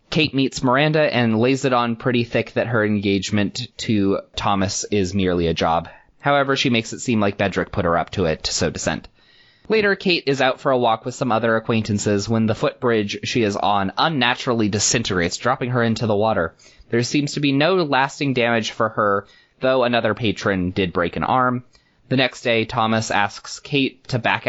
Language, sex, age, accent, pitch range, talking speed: English, male, 20-39, American, 100-125 Hz, 200 wpm